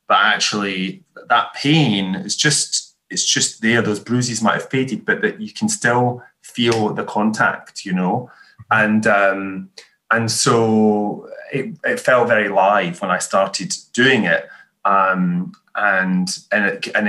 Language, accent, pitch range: English, British, 100-125 Hz